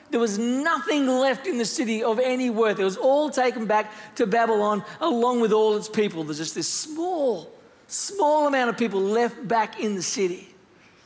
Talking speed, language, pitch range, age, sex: 190 wpm, English, 185-250 Hz, 40-59, male